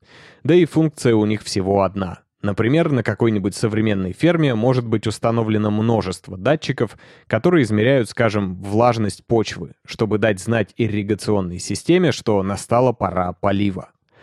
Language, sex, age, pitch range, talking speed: Russian, male, 20-39, 100-130 Hz, 130 wpm